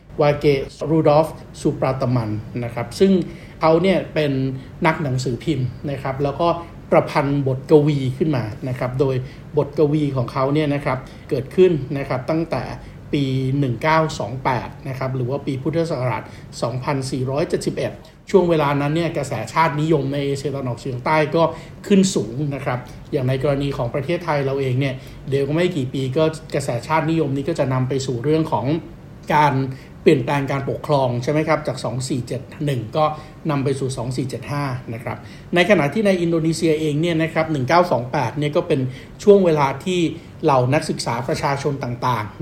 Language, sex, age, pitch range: Thai, male, 60-79, 130-155 Hz